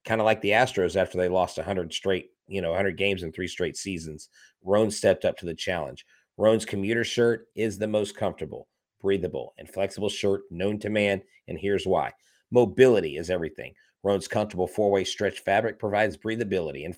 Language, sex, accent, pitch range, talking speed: English, male, American, 90-110 Hz, 185 wpm